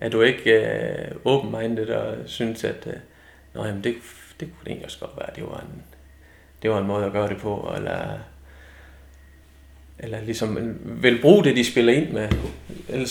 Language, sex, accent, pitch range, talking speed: Danish, male, native, 90-115 Hz, 180 wpm